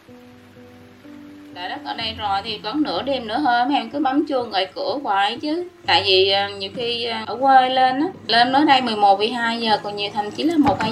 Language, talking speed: Vietnamese, 225 wpm